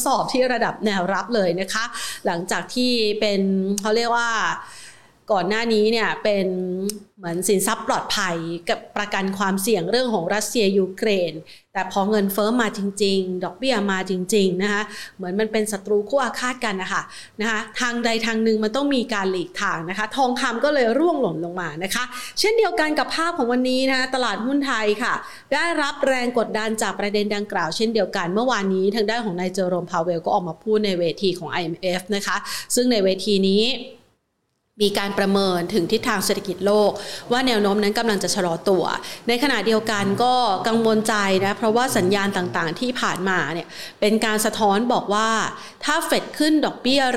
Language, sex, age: Thai, female, 30-49